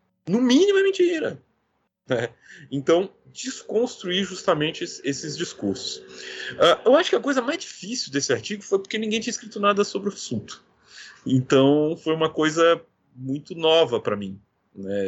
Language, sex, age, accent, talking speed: Portuguese, male, 40-59, Brazilian, 150 wpm